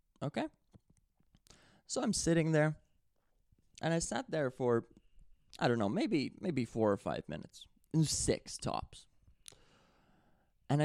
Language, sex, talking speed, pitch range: English, male, 120 wpm, 110-140 Hz